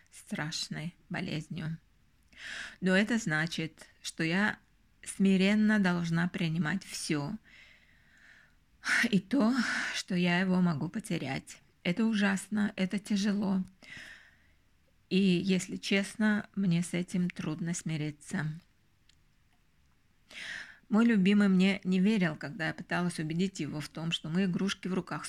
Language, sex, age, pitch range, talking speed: Russian, female, 20-39, 165-195 Hz, 110 wpm